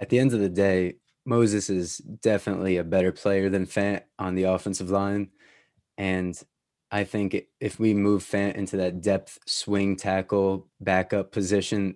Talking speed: 160 wpm